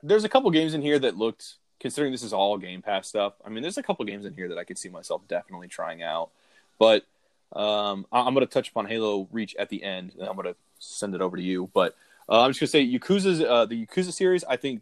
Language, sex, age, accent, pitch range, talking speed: English, male, 20-39, American, 95-135 Hz, 275 wpm